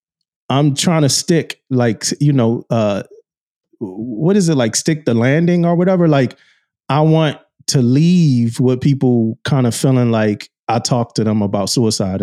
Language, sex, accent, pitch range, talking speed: English, male, American, 110-135 Hz, 165 wpm